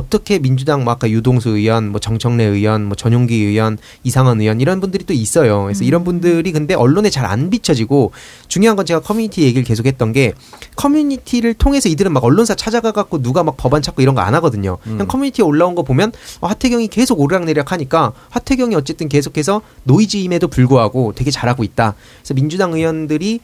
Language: Korean